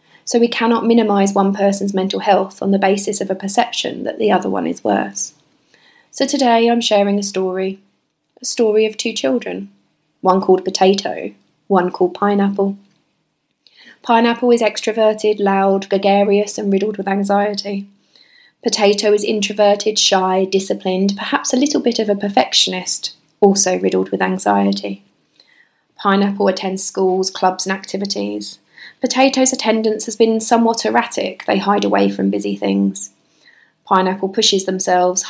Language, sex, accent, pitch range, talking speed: English, female, British, 185-210 Hz, 140 wpm